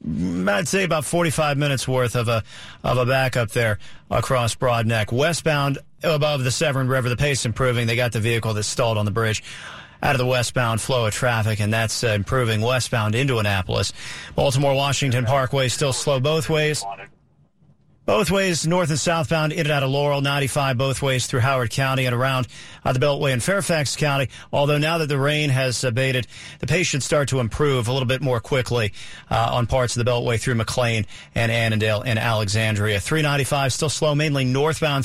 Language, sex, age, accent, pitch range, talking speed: English, male, 40-59, American, 120-145 Hz, 190 wpm